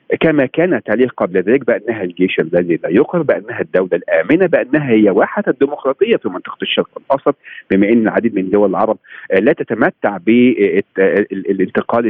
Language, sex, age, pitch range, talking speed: Arabic, male, 50-69, 115-190 Hz, 150 wpm